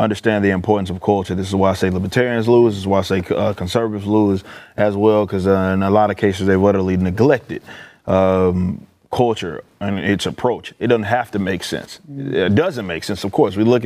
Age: 20-39